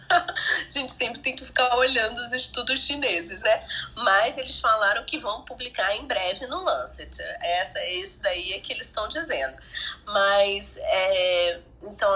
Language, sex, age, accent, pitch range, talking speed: Portuguese, female, 20-39, Brazilian, 190-280 Hz, 160 wpm